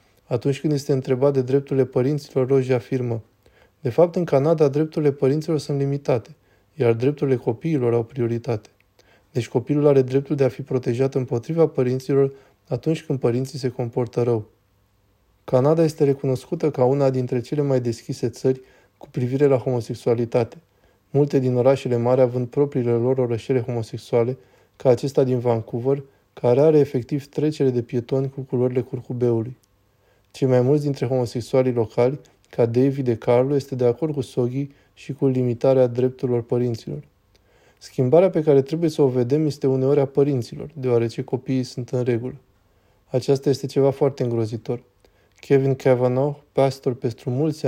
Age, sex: 20-39, male